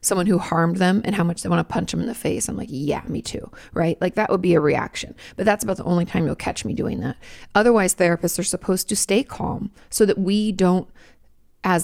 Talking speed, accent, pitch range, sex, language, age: 255 wpm, American, 170-210 Hz, female, English, 30-49